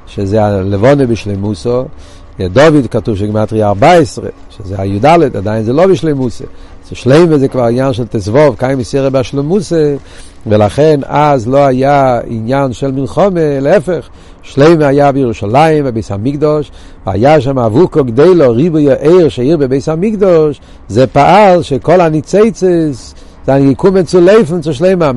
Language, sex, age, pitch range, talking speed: Hebrew, male, 60-79, 125-175 Hz, 130 wpm